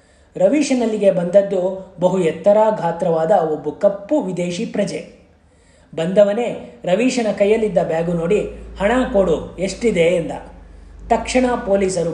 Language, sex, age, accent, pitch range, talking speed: Kannada, male, 30-49, native, 160-205 Hz, 100 wpm